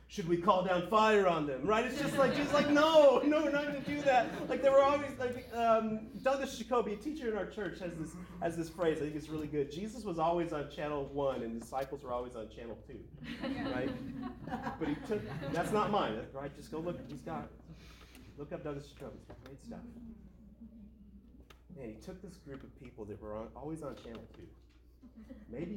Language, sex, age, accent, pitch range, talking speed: English, male, 30-49, American, 140-210 Hz, 215 wpm